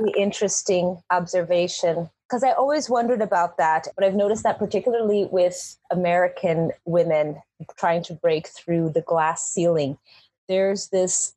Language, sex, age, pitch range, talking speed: English, female, 30-49, 170-190 Hz, 130 wpm